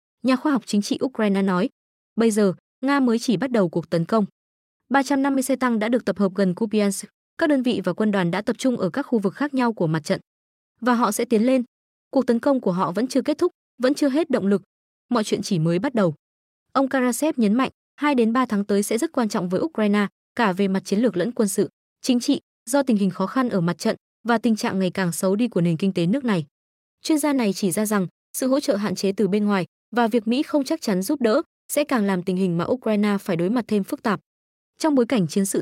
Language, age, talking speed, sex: Vietnamese, 20-39, 260 wpm, female